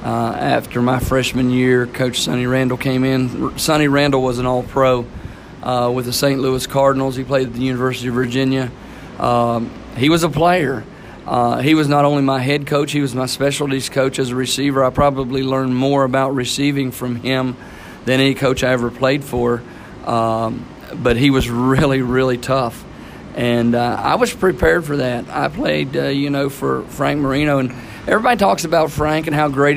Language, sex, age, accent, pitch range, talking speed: English, male, 40-59, American, 125-145 Hz, 190 wpm